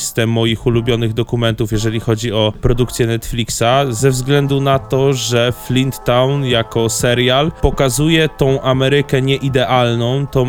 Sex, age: male, 20-39